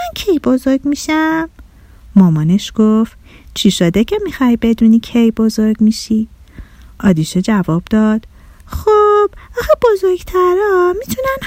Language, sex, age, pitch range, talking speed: Persian, female, 30-49, 210-315 Hz, 110 wpm